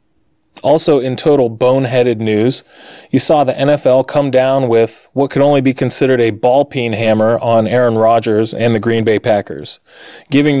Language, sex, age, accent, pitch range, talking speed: English, male, 30-49, American, 115-135 Hz, 165 wpm